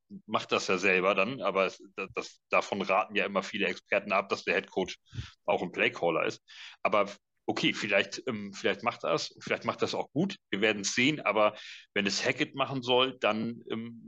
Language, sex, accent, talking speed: German, male, German, 190 wpm